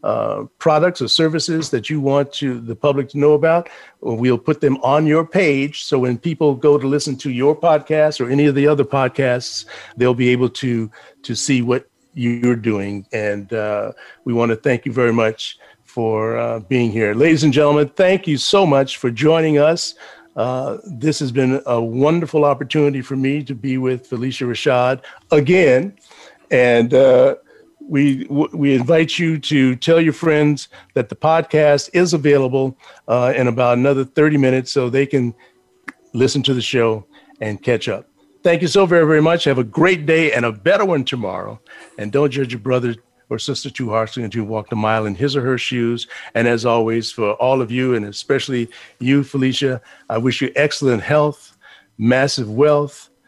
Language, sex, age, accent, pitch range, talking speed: English, male, 50-69, American, 120-150 Hz, 185 wpm